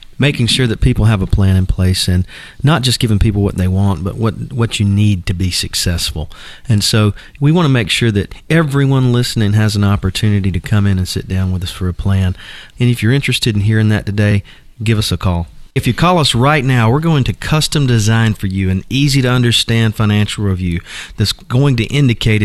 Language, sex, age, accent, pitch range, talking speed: English, male, 40-59, American, 100-130 Hz, 220 wpm